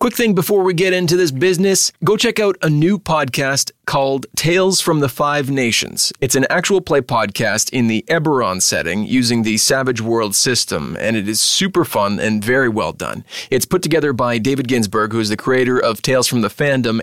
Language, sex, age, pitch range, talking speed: English, male, 30-49, 120-165 Hz, 205 wpm